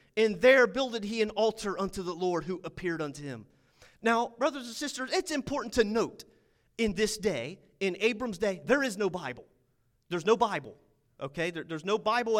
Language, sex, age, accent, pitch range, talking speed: English, male, 30-49, American, 175-260 Hz, 185 wpm